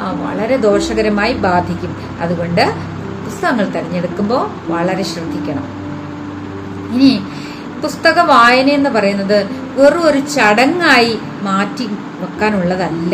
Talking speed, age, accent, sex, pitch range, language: 80 wpm, 30-49, native, female, 190-255 Hz, Malayalam